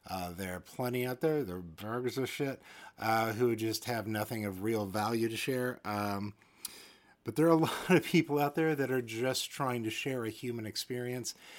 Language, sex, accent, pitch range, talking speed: English, male, American, 105-145 Hz, 205 wpm